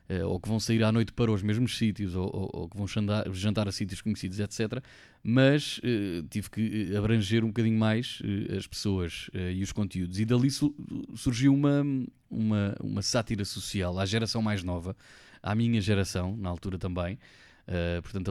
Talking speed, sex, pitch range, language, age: 165 wpm, male, 100-115 Hz, Portuguese, 20-39